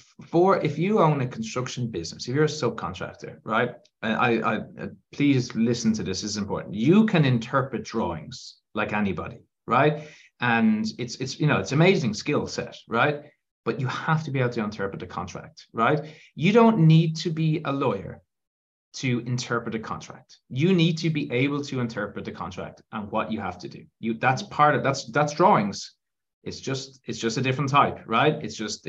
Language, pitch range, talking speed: English, 115-155 Hz, 195 wpm